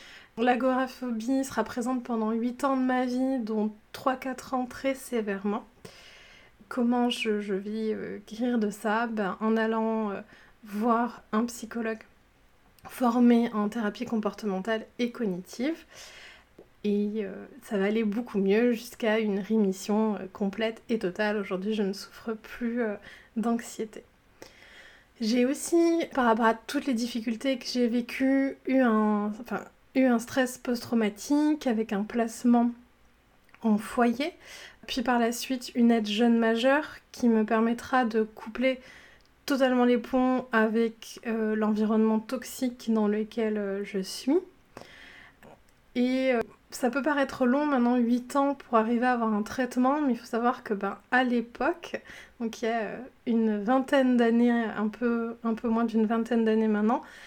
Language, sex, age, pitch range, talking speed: French, female, 20-39, 220-255 Hz, 150 wpm